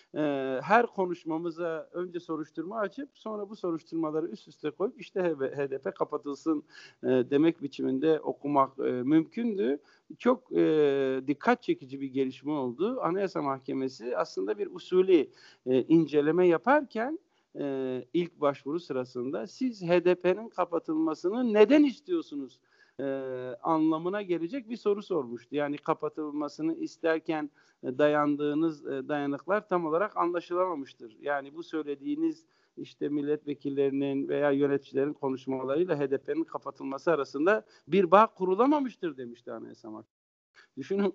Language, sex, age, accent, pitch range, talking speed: Turkish, male, 50-69, native, 140-205 Hz, 100 wpm